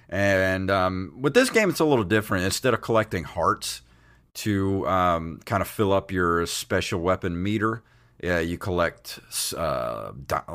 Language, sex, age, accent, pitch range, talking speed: English, male, 40-59, American, 85-105 Hz, 155 wpm